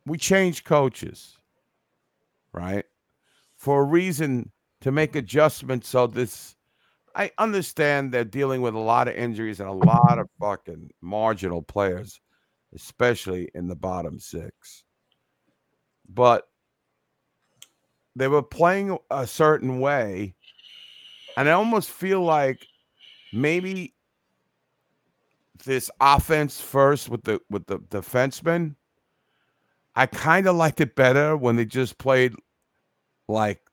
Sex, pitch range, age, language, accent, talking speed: male, 115-165 Hz, 50-69, English, American, 115 wpm